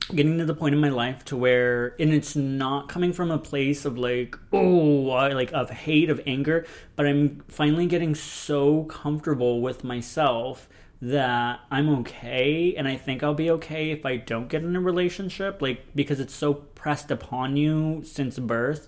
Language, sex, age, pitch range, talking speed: English, male, 30-49, 130-150 Hz, 180 wpm